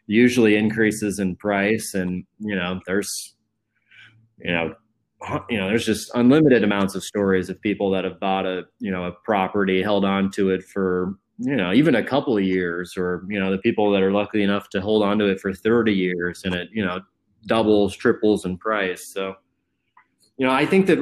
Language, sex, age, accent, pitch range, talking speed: English, male, 20-39, American, 95-115 Hz, 205 wpm